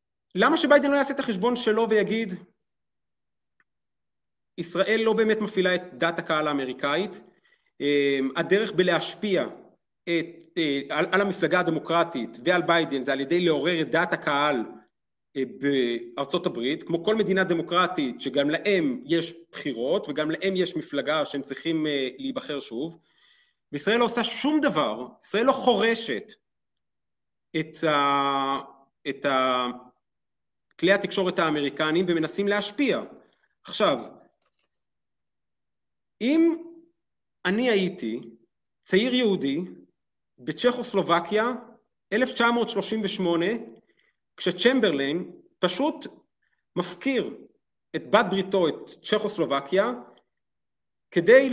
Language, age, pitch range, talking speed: Hebrew, 40-59, 155-225 Hz, 100 wpm